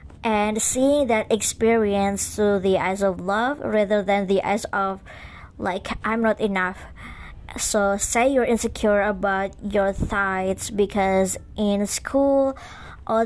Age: 20-39